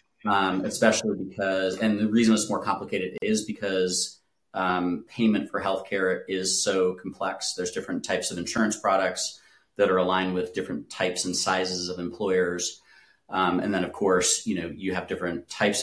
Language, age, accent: English, 30-49, American